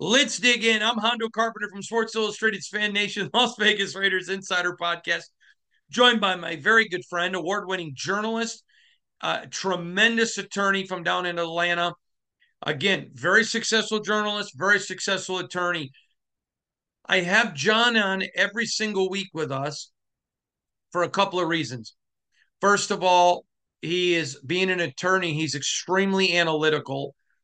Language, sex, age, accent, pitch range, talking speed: English, male, 40-59, American, 160-210 Hz, 135 wpm